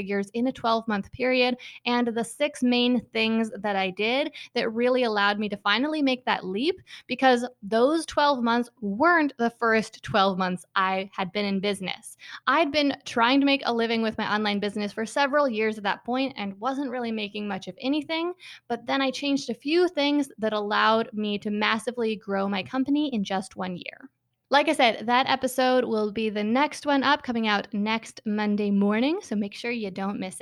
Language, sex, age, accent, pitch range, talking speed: English, female, 20-39, American, 210-255 Hz, 195 wpm